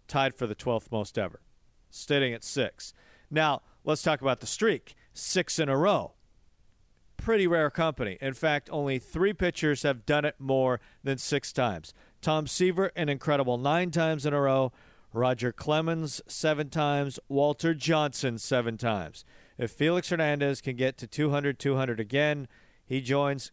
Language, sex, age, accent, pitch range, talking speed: English, male, 50-69, American, 125-155 Hz, 155 wpm